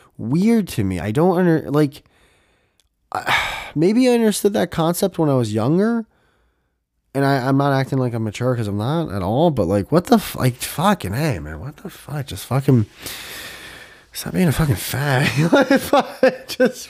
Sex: male